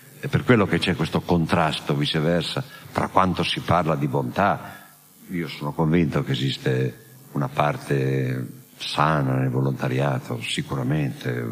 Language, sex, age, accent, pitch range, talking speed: Italian, male, 60-79, native, 80-100 Hz, 130 wpm